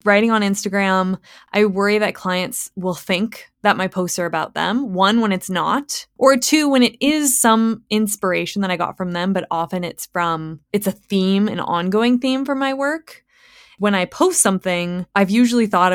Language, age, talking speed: English, 20-39, 190 wpm